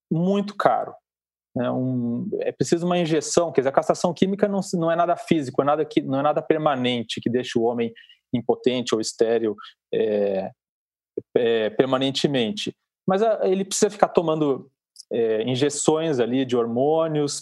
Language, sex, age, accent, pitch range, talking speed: Portuguese, male, 40-59, Brazilian, 125-190 Hz, 130 wpm